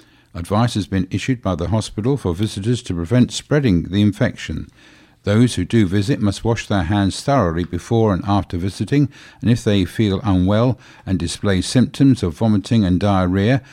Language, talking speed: English, 170 wpm